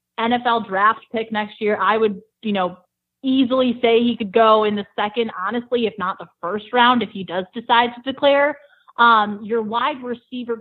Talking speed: 185 wpm